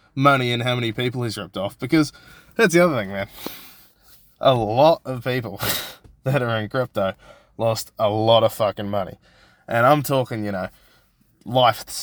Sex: male